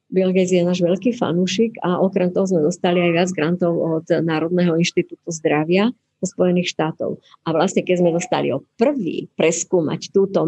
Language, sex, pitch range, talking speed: Czech, female, 170-205 Hz, 165 wpm